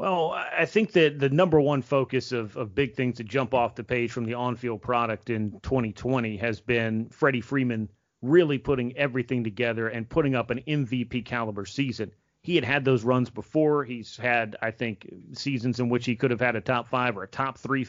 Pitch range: 115-135 Hz